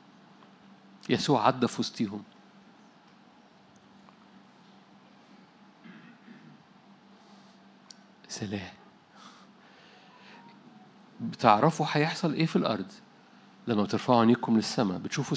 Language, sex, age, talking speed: Arabic, male, 50-69, 50 wpm